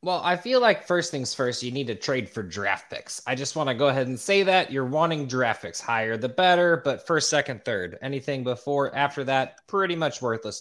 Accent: American